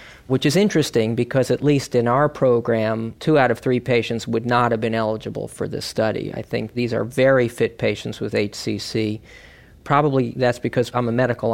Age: 40-59